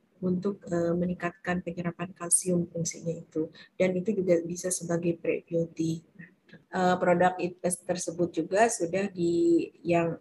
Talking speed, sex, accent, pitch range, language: 110 wpm, female, native, 175-205 Hz, Indonesian